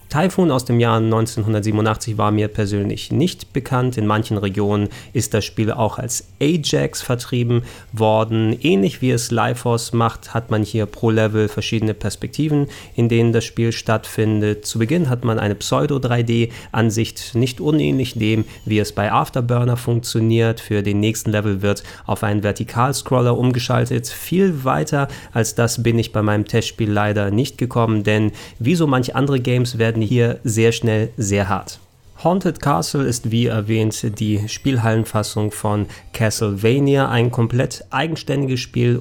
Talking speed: 150 wpm